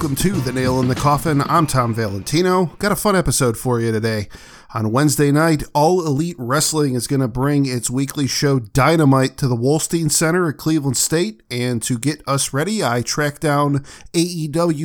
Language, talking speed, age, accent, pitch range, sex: English, 190 wpm, 50-69, American, 125-160 Hz, male